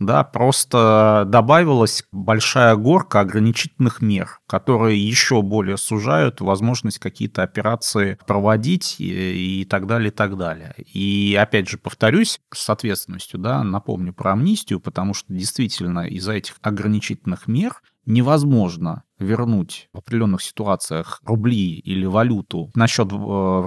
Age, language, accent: 30-49, Russian, native